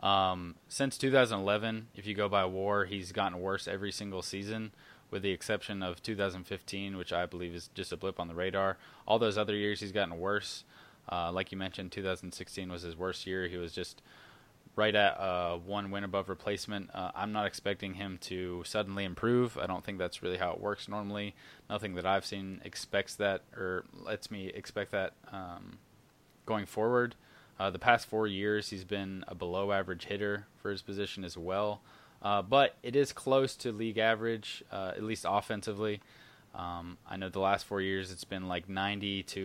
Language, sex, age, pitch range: English, male, 20-39, 95-105 Hz